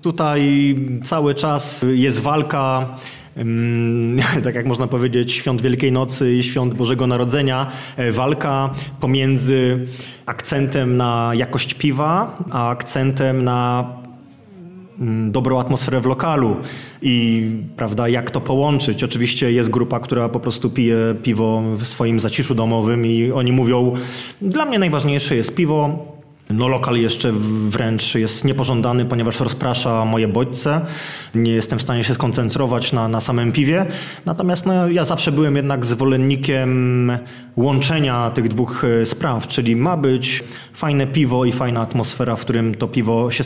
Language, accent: Polish, native